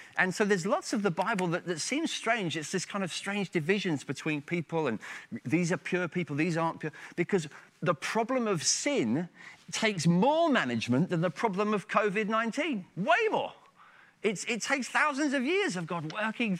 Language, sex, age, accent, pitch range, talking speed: English, male, 30-49, British, 140-205 Hz, 180 wpm